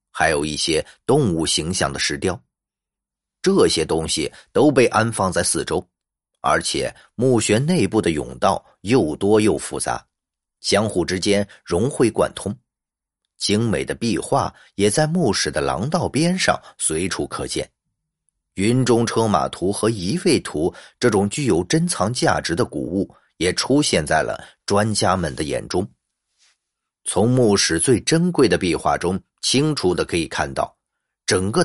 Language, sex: Chinese, male